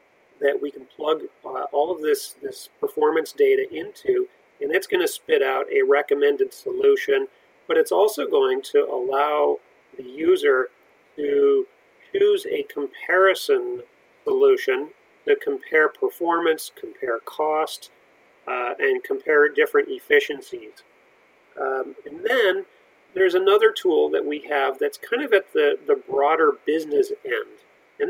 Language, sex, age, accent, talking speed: English, male, 40-59, American, 130 wpm